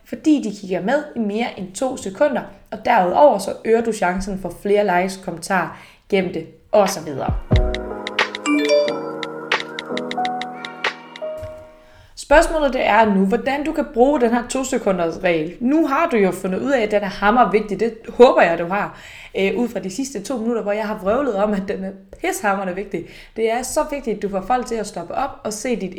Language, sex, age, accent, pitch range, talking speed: Danish, female, 20-39, native, 185-245 Hz, 195 wpm